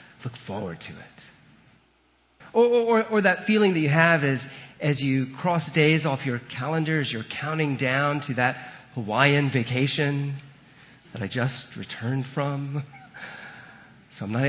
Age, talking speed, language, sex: 40-59, 145 wpm, English, male